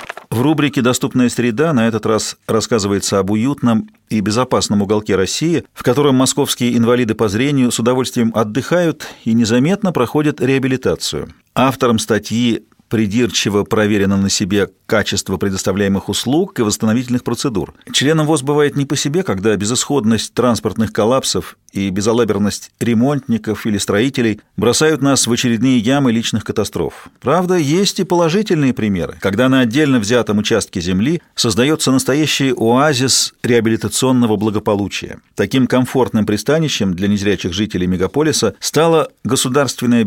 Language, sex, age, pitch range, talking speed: Russian, male, 40-59, 105-130 Hz, 130 wpm